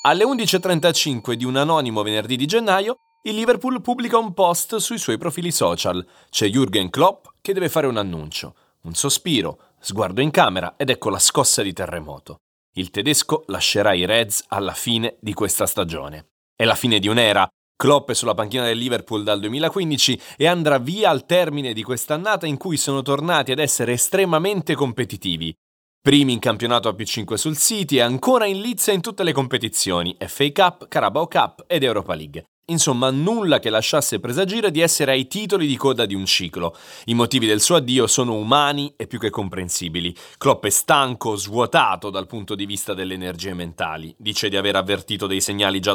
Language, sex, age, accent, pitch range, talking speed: Italian, male, 30-49, native, 100-155 Hz, 180 wpm